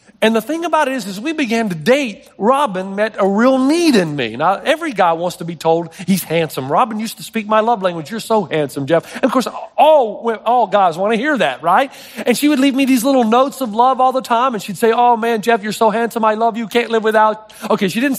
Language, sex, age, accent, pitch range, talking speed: English, male, 40-59, American, 195-255 Hz, 265 wpm